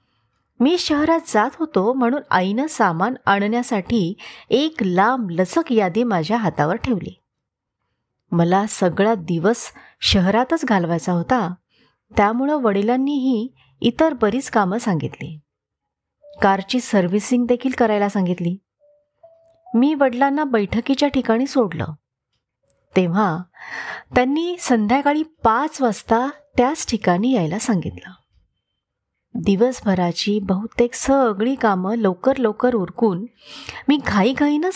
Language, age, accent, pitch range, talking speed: Marathi, 30-49, native, 190-275 Hz, 95 wpm